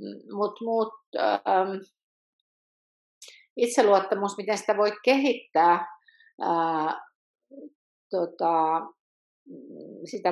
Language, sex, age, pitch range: Finnish, female, 50-69, 170-215 Hz